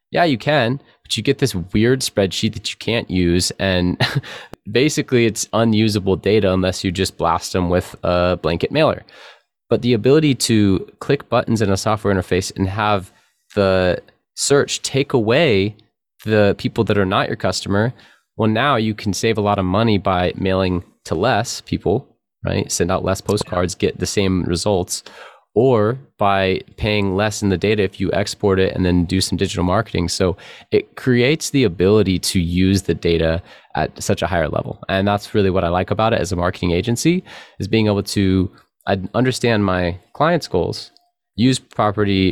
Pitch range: 90-110 Hz